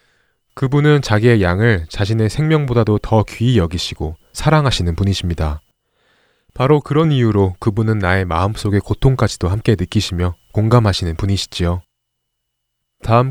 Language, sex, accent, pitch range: Korean, male, native, 95-125 Hz